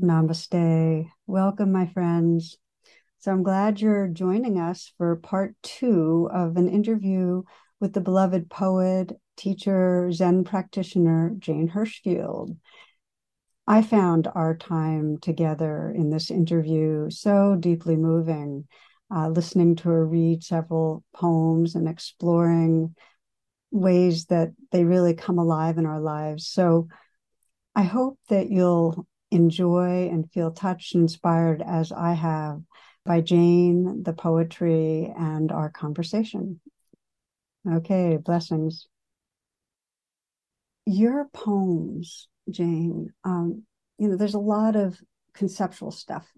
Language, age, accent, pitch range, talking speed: English, 60-79, American, 165-190 Hz, 115 wpm